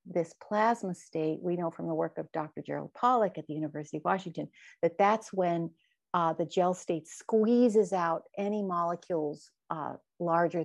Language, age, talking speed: English, 50-69, 170 wpm